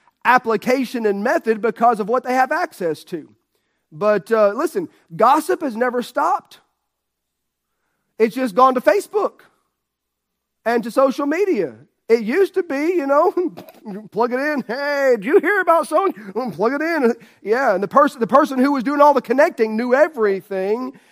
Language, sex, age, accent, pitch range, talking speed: English, male, 40-59, American, 200-260 Hz, 165 wpm